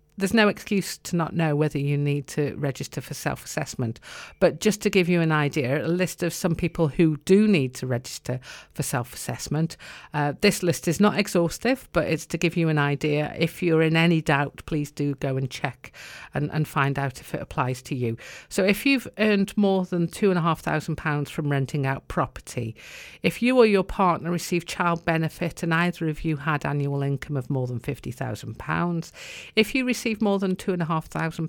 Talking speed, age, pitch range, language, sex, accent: 195 wpm, 50-69, 145-180 Hz, English, female, British